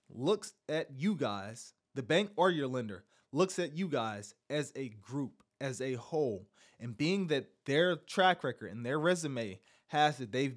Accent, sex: American, male